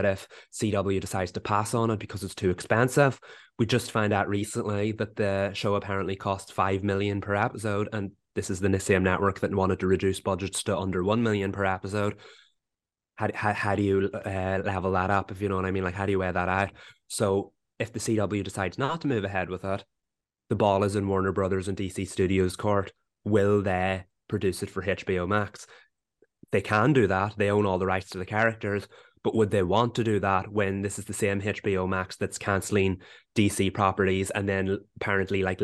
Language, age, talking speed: English, 20-39, 210 wpm